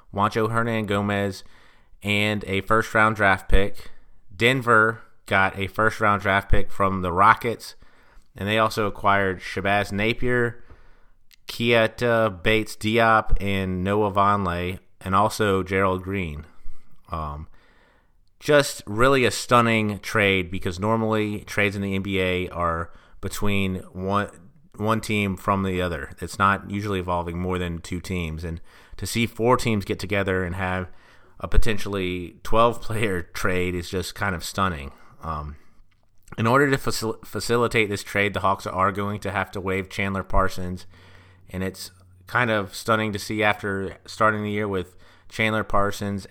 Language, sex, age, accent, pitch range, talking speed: English, male, 30-49, American, 90-105 Hz, 145 wpm